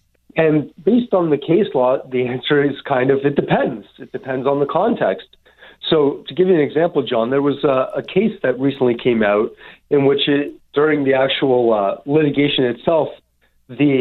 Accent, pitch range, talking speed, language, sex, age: American, 120-145 Hz, 185 wpm, English, male, 40-59